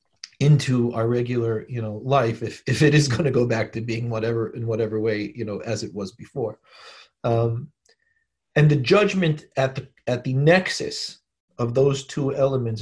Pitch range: 120-150 Hz